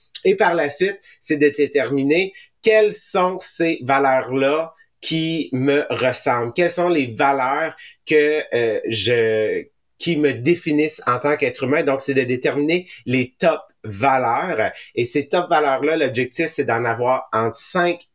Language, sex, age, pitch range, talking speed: English, male, 30-49, 140-180 Hz, 150 wpm